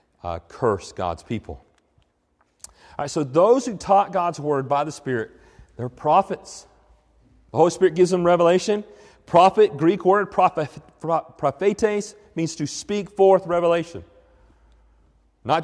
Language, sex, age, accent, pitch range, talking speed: English, male, 40-59, American, 135-185 Hz, 130 wpm